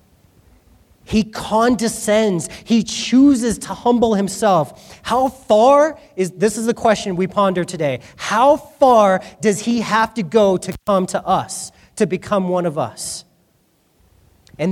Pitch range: 175-235 Hz